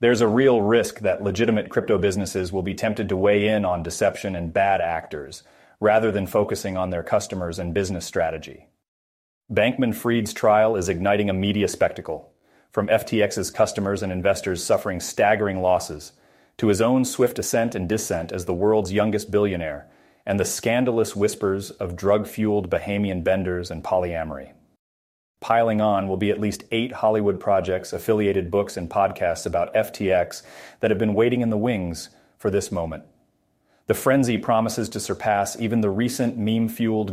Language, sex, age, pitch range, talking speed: English, male, 30-49, 95-110 Hz, 160 wpm